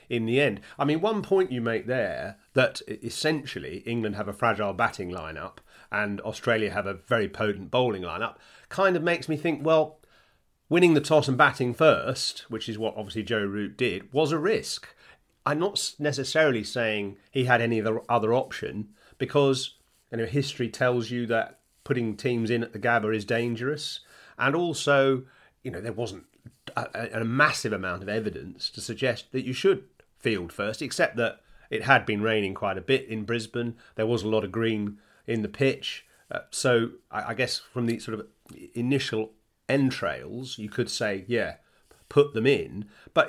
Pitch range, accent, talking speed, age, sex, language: 110-135 Hz, British, 180 wpm, 40-59, male, English